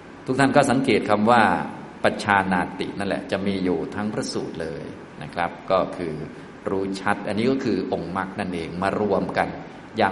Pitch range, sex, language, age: 95-125 Hz, male, Thai, 20-39